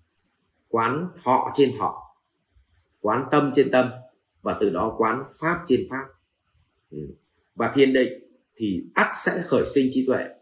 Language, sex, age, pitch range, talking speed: Vietnamese, male, 30-49, 95-145 Hz, 145 wpm